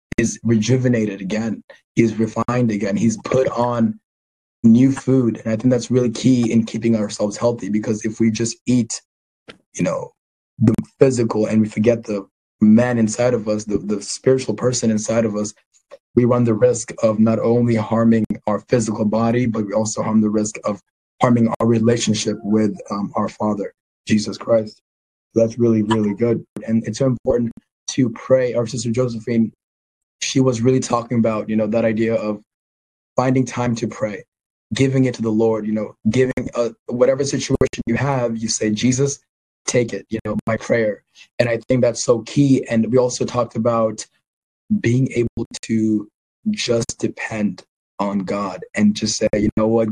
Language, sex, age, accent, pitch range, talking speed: English, male, 20-39, American, 110-120 Hz, 175 wpm